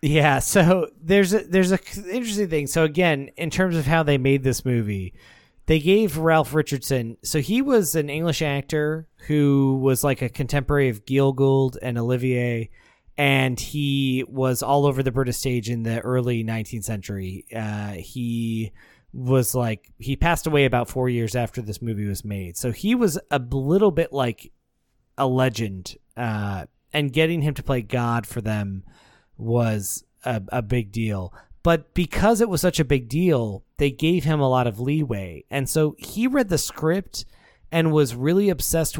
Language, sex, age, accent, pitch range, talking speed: English, male, 30-49, American, 120-160 Hz, 175 wpm